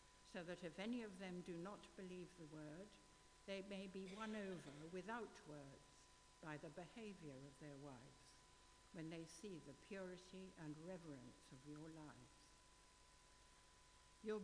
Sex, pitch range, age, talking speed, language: female, 150-195 Hz, 60-79, 140 wpm, English